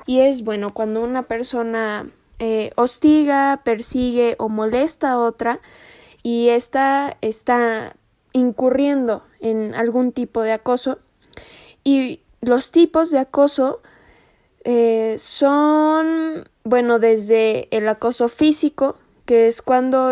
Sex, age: female, 10-29